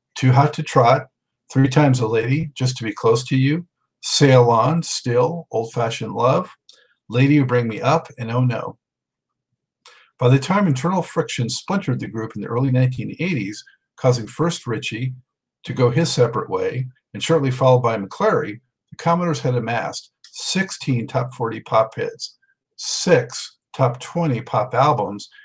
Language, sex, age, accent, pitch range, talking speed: English, male, 50-69, American, 120-155 Hz, 160 wpm